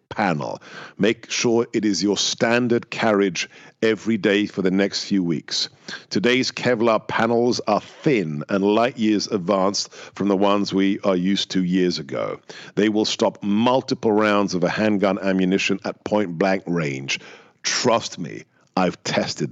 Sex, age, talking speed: male, 50-69, 155 wpm